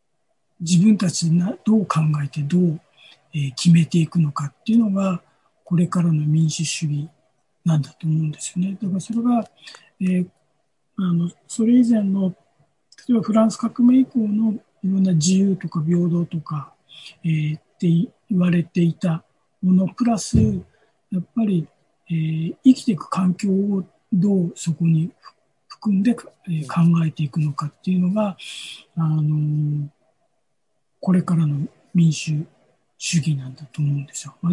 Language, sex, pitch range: Japanese, male, 160-210 Hz